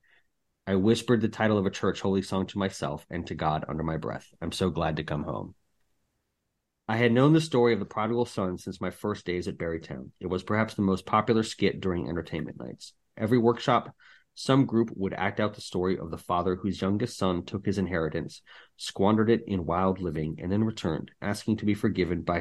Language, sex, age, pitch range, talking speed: English, male, 30-49, 85-110 Hz, 210 wpm